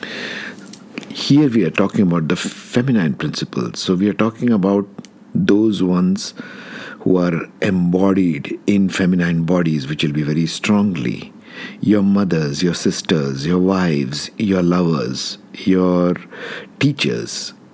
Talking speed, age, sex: 120 wpm, 50-69, male